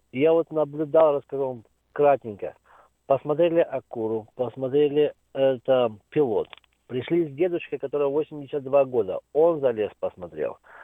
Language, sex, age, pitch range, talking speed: Russian, male, 50-69, 135-165 Hz, 110 wpm